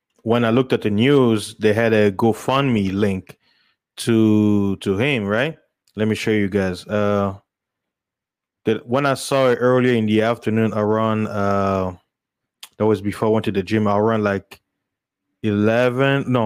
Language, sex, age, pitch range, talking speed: English, male, 20-39, 105-125 Hz, 170 wpm